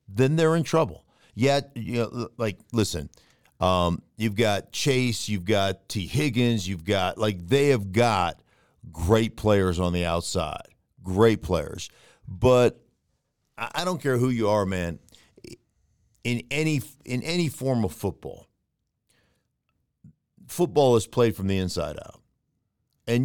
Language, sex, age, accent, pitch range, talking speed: English, male, 50-69, American, 100-125 Hz, 130 wpm